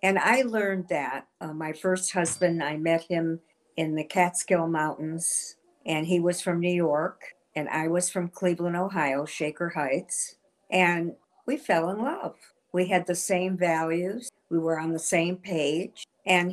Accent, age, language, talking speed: American, 60-79, English, 165 wpm